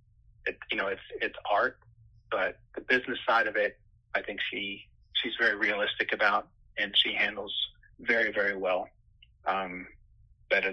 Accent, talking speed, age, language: American, 150 wpm, 30-49, English